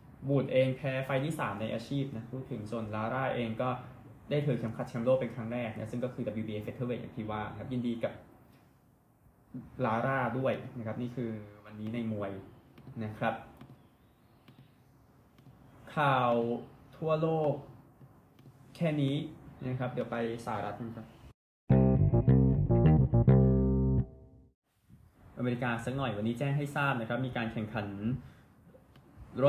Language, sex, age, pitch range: Thai, male, 20-39, 115-135 Hz